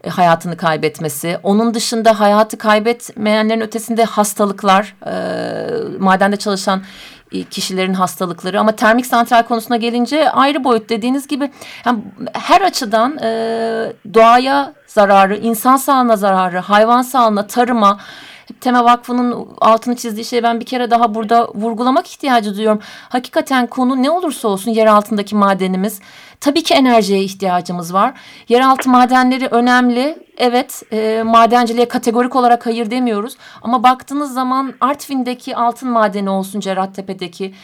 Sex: female